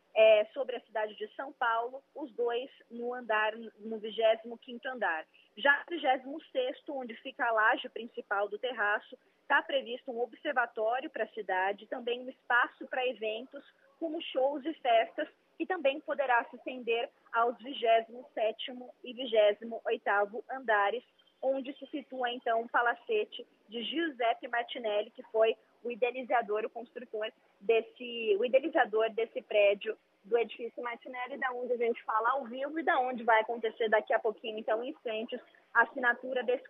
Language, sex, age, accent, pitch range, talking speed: Portuguese, female, 20-39, Brazilian, 225-270 Hz, 150 wpm